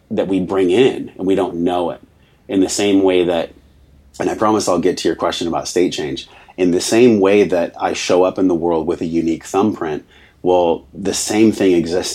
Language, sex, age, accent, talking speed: English, male, 30-49, American, 220 wpm